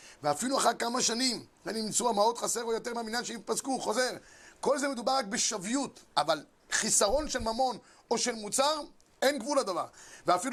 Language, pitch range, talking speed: Hebrew, 210-265 Hz, 160 wpm